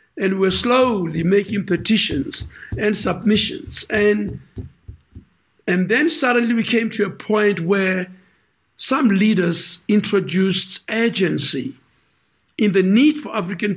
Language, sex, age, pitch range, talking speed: English, male, 60-79, 185-225 Hz, 115 wpm